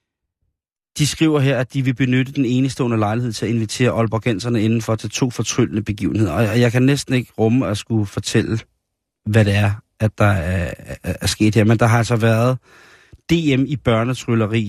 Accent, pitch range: native, 110-125 Hz